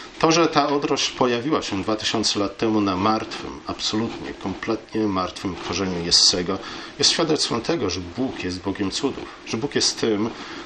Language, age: Polish, 40-59